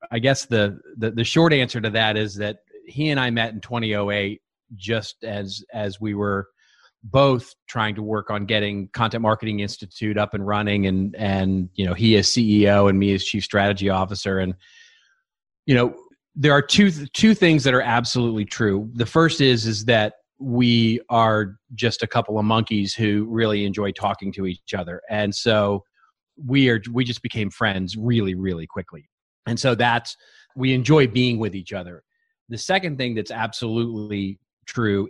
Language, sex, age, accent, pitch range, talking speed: English, male, 40-59, American, 100-120 Hz, 180 wpm